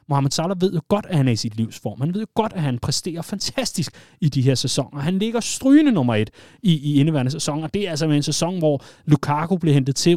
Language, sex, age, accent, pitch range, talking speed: Danish, male, 30-49, native, 125-160 Hz, 250 wpm